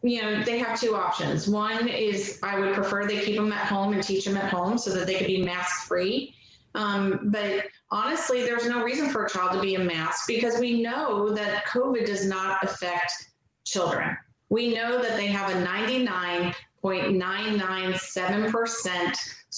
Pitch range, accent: 190-230 Hz, American